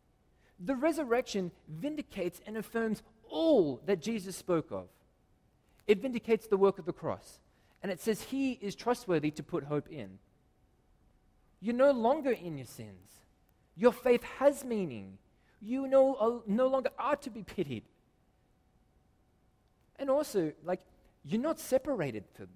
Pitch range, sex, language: 140-220 Hz, male, English